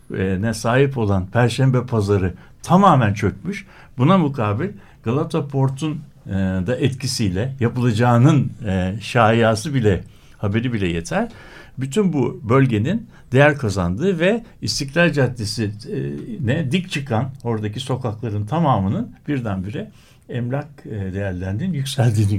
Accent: native